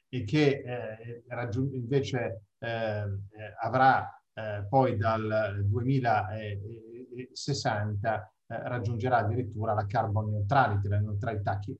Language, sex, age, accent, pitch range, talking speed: Italian, male, 30-49, native, 105-130 Hz, 95 wpm